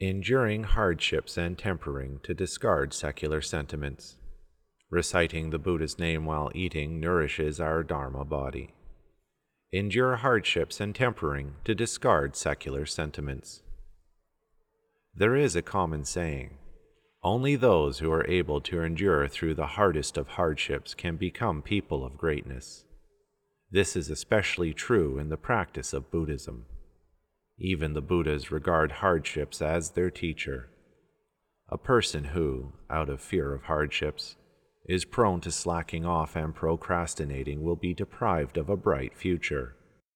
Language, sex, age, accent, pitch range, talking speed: English, male, 40-59, American, 75-95 Hz, 130 wpm